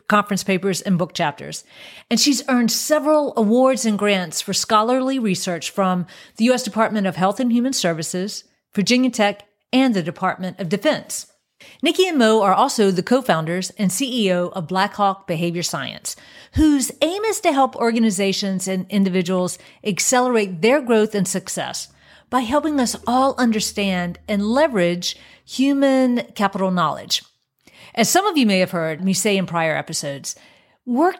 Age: 40-59